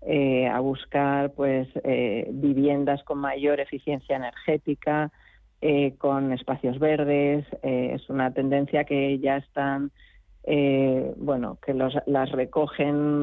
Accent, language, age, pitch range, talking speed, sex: Spanish, Spanish, 40-59, 135-155 Hz, 120 wpm, female